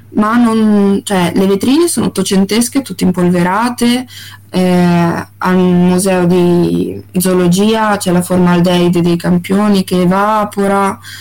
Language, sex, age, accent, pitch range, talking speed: Italian, female, 20-39, native, 175-220 Hz, 110 wpm